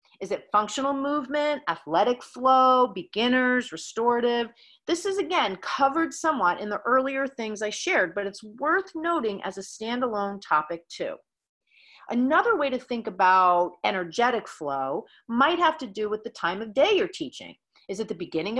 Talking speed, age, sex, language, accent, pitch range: 160 wpm, 40-59, female, English, American, 185-265 Hz